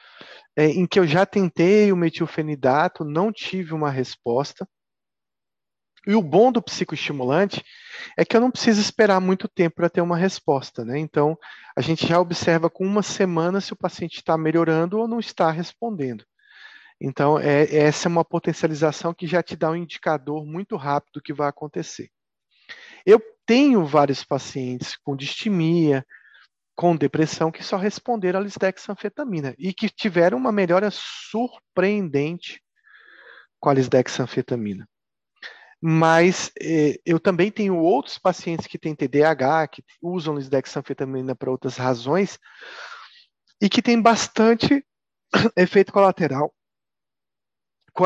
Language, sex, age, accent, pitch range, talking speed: Portuguese, male, 40-59, Brazilian, 150-210 Hz, 135 wpm